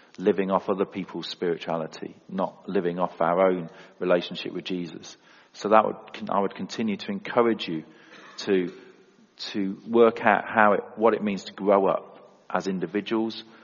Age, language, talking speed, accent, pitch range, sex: 40-59, English, 160 wpm, British, 95-110 Hz, male